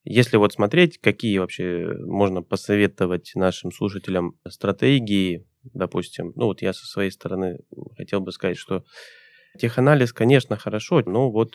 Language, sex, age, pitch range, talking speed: Russian, male, 20-39, 95-115 Hz, 135 wpm